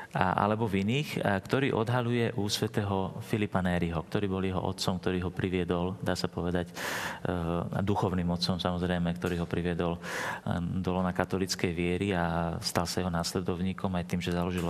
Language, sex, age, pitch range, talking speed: Slovak, male, 40-59, 95-130 Hz, 155 wpm